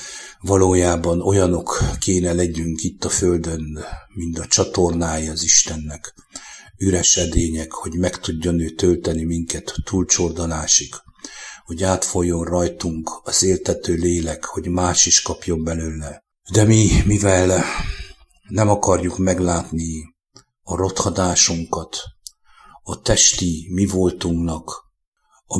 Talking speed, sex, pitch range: 105 wpm, male, 80-95 Hz